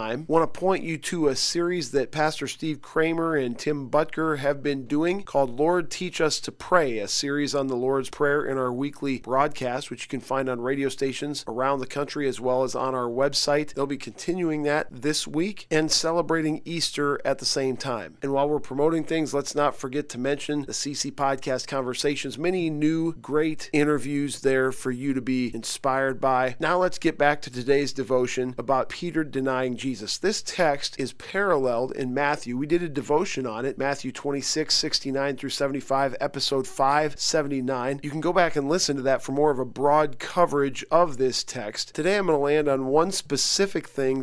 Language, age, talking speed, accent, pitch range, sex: English, 40-59, 195 wpm, American, 130-155 Hz, male